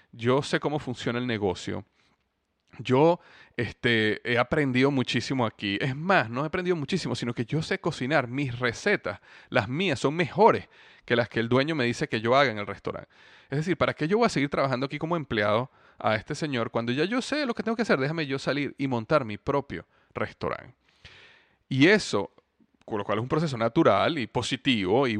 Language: Spanish